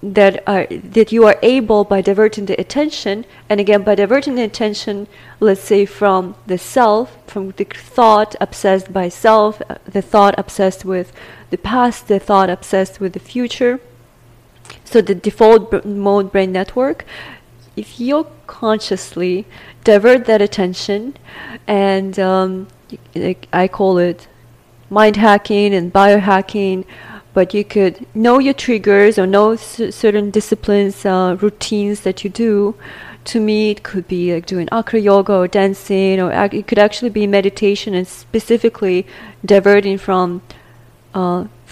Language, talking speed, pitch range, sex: English, 140 wpm, 185-215 Hz, female